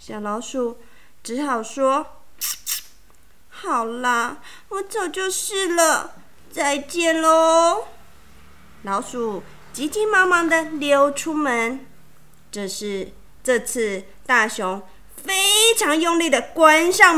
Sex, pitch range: female, 235-375 Hz